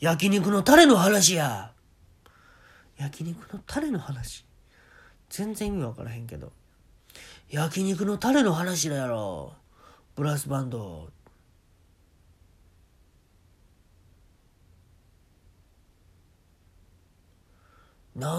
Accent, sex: native, male